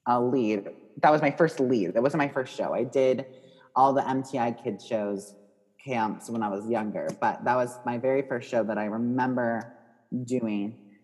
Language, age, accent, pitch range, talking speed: English, 30-49, American, 115-140 Hz, 190 wpm